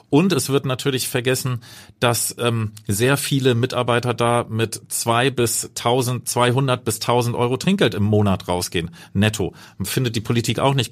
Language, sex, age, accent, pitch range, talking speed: German, male, 40-59, German, 105-130 Hz, 160 wpm